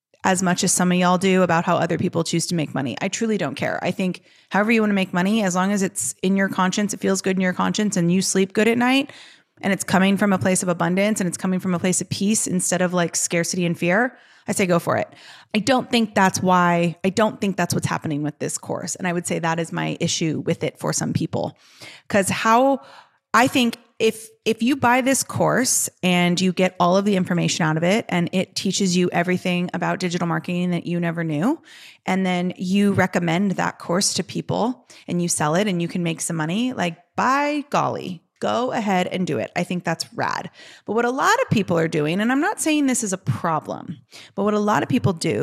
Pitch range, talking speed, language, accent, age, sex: 170-205 Hz, 245 wpm, English, American, 30-49, female